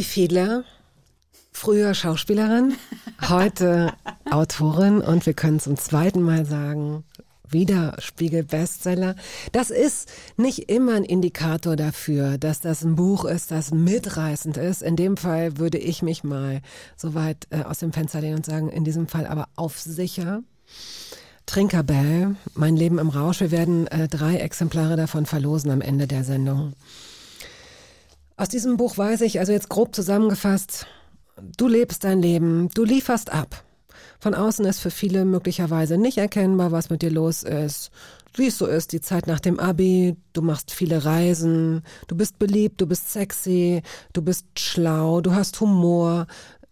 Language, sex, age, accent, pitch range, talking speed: German, female, 50-69, German, 160-190 Hz, 155 wpm